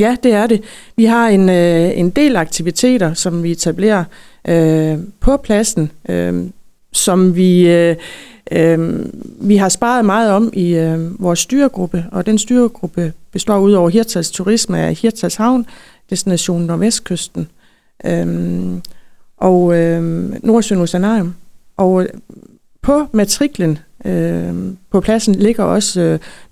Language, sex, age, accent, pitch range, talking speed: Danish, female, 30-49, native, 170-220 Hz, 130 wpm